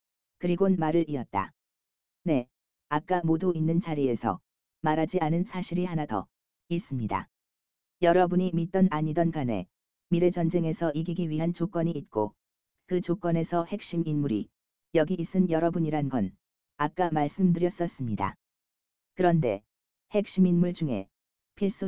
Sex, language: female, Korean